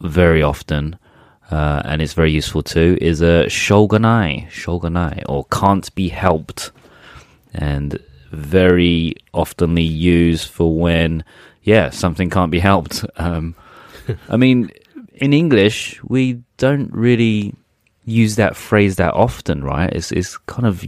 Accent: British